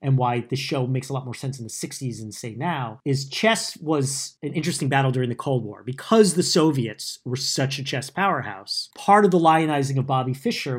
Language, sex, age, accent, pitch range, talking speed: English, male, 40-59, American, 125-165 Hz, 220 wpm